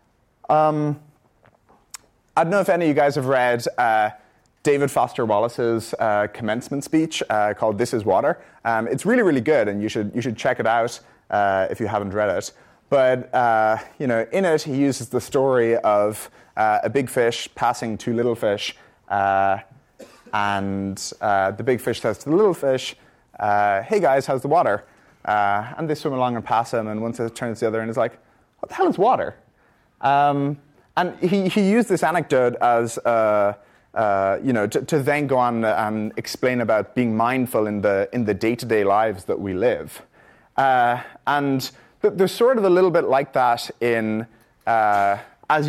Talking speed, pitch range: 195 wpm, 110-145 Hz